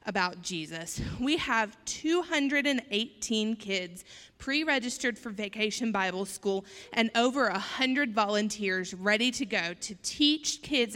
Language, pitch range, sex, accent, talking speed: English, 215-270 Hz, female, American, 120 wpm